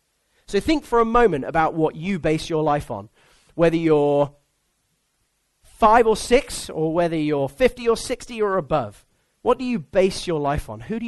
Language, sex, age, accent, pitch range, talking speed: English, male, 30-49, British, 155-230 Hz, 185 wpm